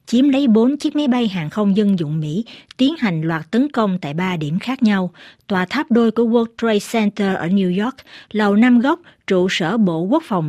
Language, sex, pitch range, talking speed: Vietnamese, female, 180-230 Hz, 225 wpm